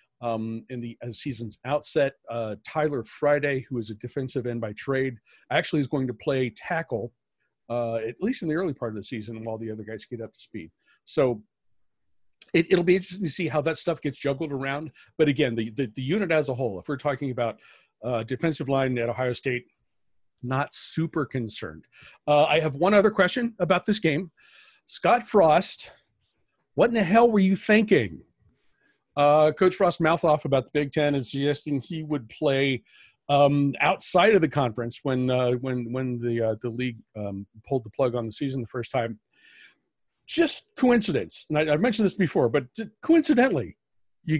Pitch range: 120-160 Hz